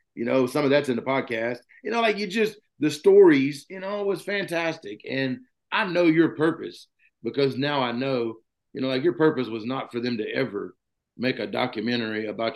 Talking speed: 205 wpm